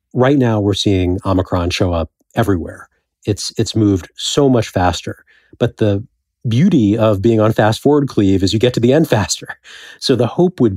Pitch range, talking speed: 95-115 Hz, 190 wpm